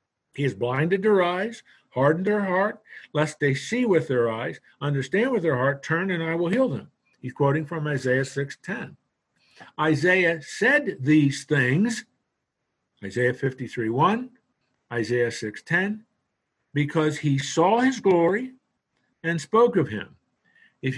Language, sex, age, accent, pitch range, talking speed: English, male, 60-79, American, 125-185 Hz, 135 wpm